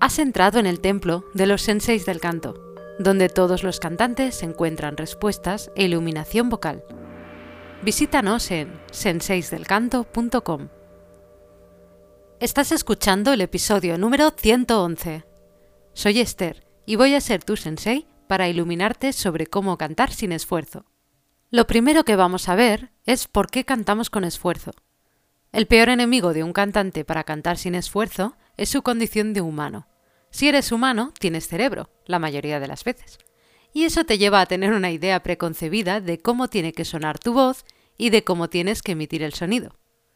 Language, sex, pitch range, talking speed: Spanish, female, 165-225 Hz, 155 wpm